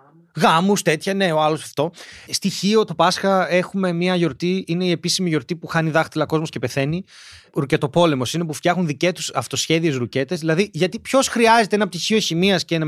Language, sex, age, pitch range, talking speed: Greek, male, 30-49, 165-235 Hz, 185 wpm